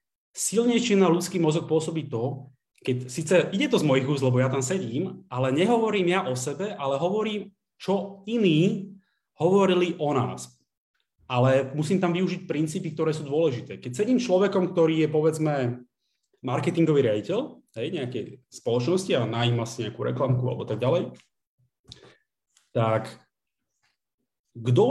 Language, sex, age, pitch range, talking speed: Slovak, male, 30-49, 120-180 Hz, 135 wpm